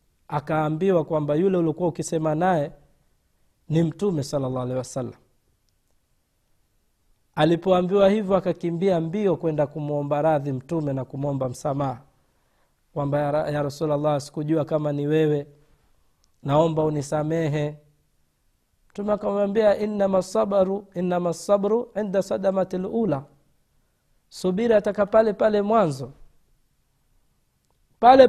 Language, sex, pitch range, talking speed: Swahili, male, 150-205 Hz, 95 wpm